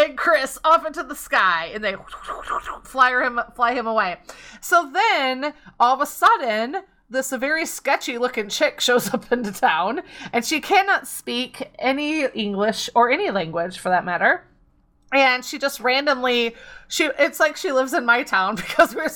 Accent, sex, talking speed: American, female, 165 wpm